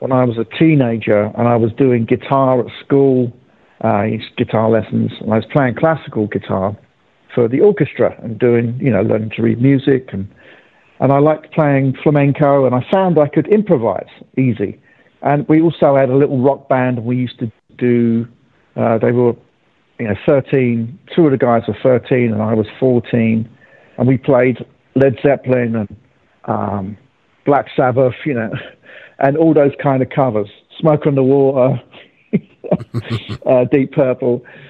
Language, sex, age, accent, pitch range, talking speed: English, male, 50-69, British, 115-145 Hz, 170 wpm